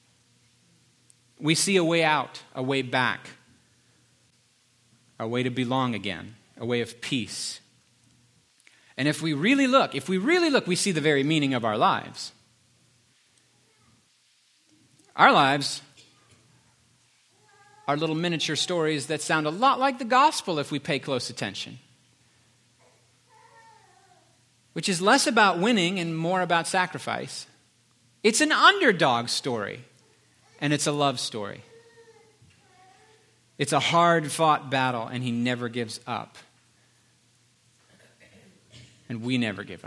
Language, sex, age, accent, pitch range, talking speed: English, male, 40-59, American, 120-180 Hz, 125 wpm